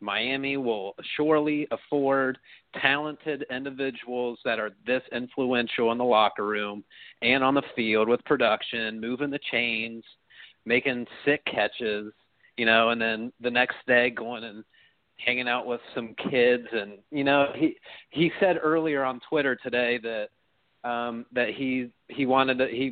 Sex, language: male, English